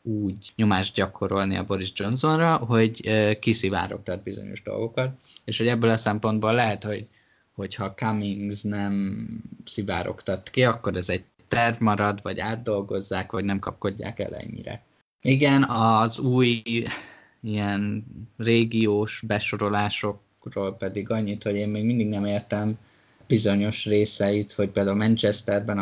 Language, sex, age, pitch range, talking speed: Hungarian, male, 20-39, 100-110 Hz, 125 wpm